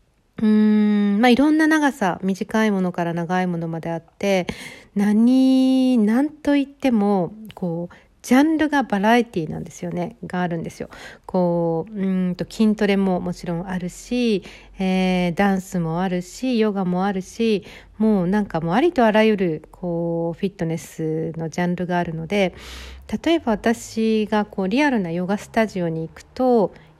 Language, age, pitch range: Japanese, 60-79, 175-225 Hz